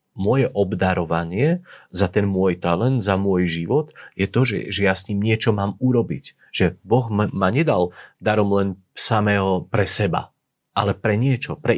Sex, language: male, Slovak